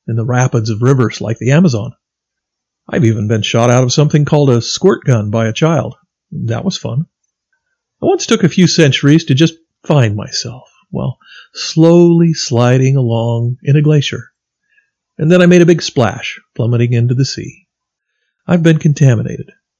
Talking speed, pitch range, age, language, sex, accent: 170 wpm, 120-160 Hz, 50-69, English, male, American